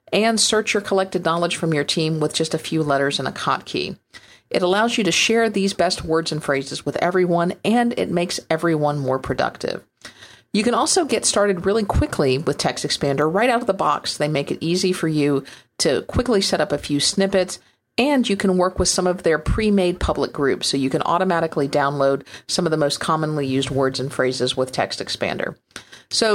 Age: 50-69